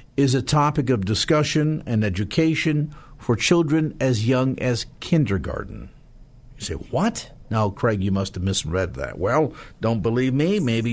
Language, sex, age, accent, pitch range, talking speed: English, male, 50-69, American, 110-145 Hz, 155 wpm